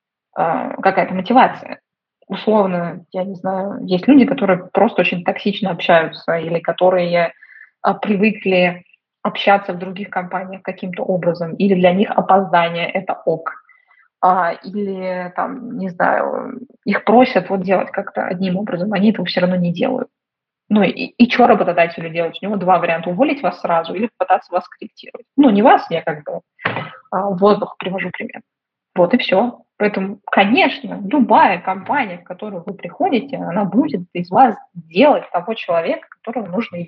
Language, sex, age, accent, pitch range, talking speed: Russian, female, 20-39, native, 185-240 Hz, 150 wpm